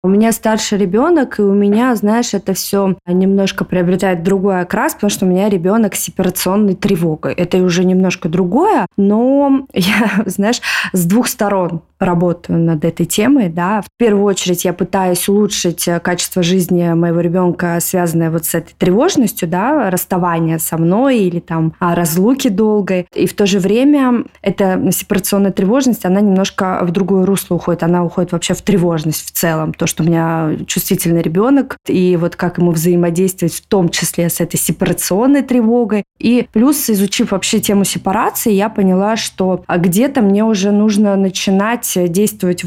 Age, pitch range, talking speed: 20-39, 175-210 Hz, 160 wpm